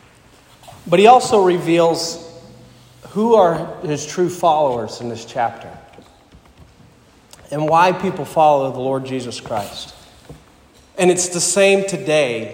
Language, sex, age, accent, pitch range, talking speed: English, male, 40-59, American, 140-170 Hz, 120 wpm